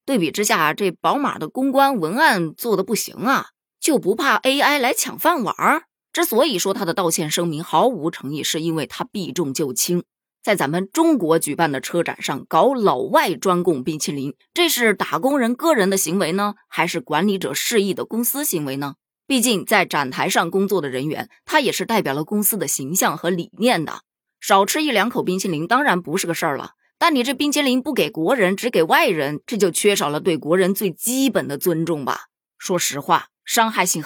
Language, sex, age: Chinese, female, 20-39